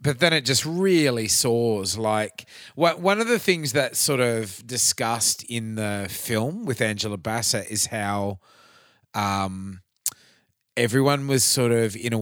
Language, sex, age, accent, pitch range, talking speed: English, male, 30-49, Australian, 100-125 Hz, 150 wpm